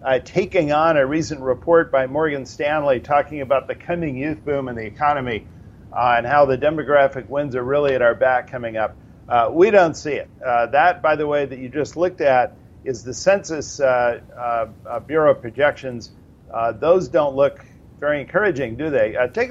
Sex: male